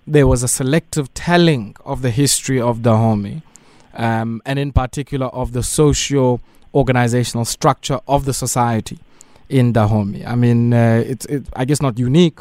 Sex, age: male, 20-39